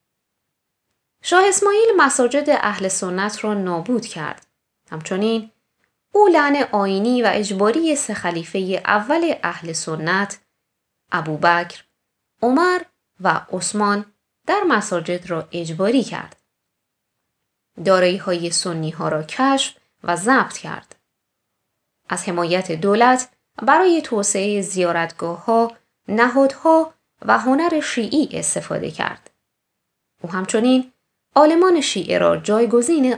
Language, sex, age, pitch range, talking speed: Persian, female, 20-39, 180-280 Hz, 100 wpm